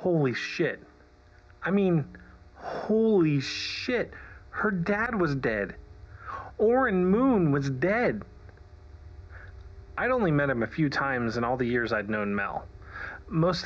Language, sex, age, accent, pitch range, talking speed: English, male, 30-49, American, 95-135 Hz, 125 wpm